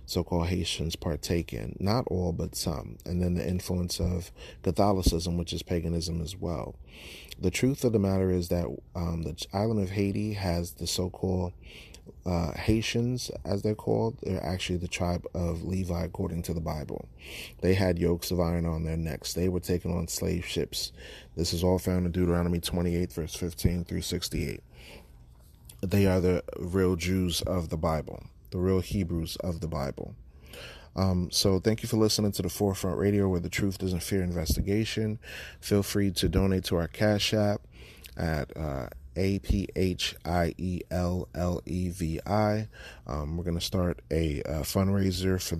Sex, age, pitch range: male, 30-49, 85-95 Hz